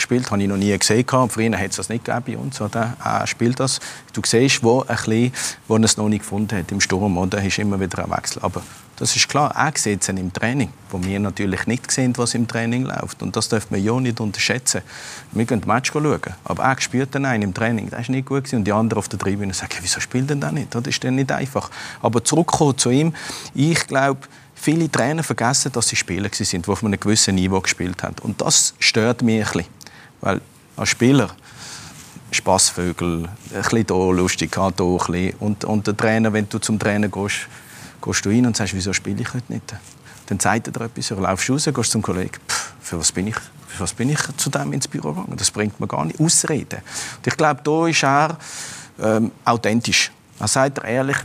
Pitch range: 100-130 Hz